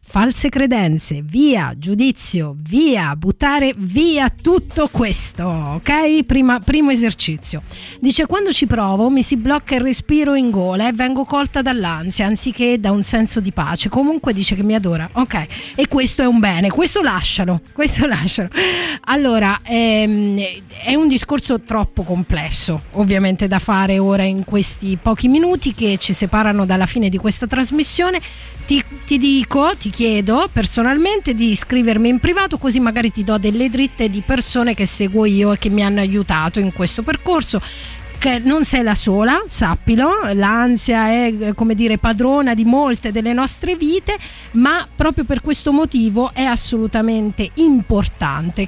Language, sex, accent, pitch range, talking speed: Italian, female, native, 200-270 Hz, 155 wpm